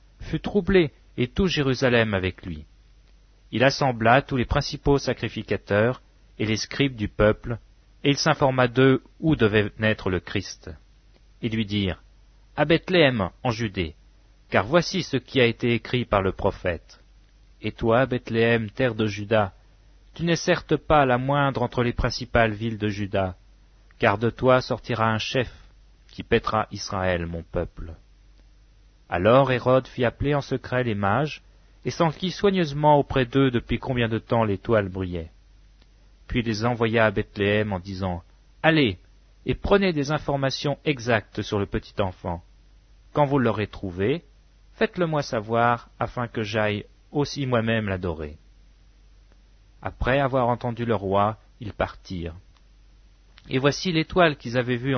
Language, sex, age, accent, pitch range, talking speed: English, male, 40-59, French, 100-135 Hz, 150 wpm